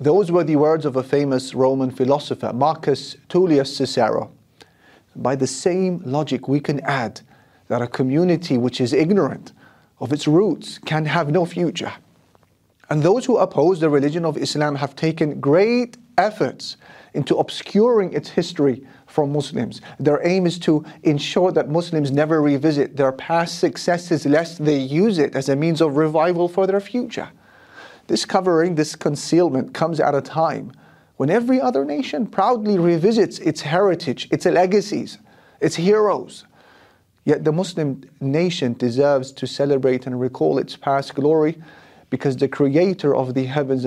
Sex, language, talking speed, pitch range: male, English, 155 wpm, 135-170 Hz